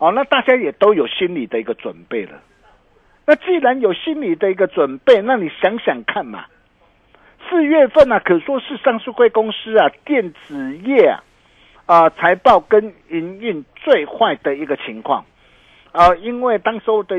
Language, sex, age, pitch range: Chinese, male, 50-69, 175-255 Hz